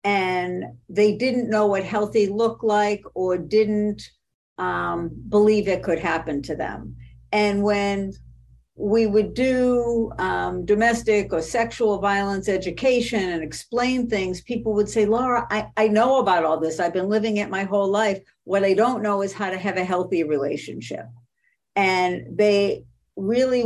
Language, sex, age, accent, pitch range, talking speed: English, female, 60-79, American, 180-220 Hz, 155 wpm